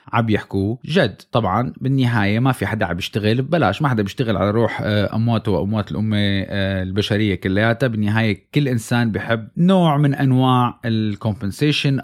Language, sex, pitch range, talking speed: Arabic, male, 110-145 Hz, 145 wpm